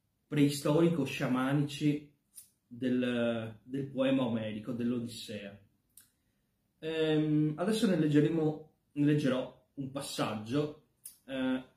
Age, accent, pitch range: 30-49, native, 115-150 Hz